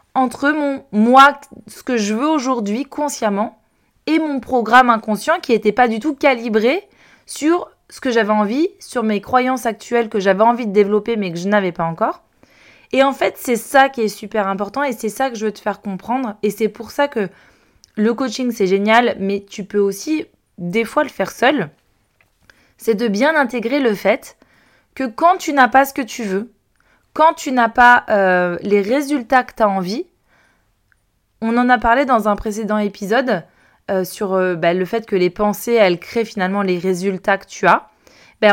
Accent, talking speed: French, 200 wpm